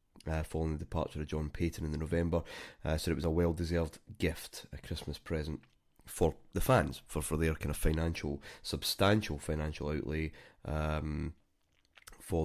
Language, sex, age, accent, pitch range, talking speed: English, male, 30-49, British, 80-95 Hz, 165 wpm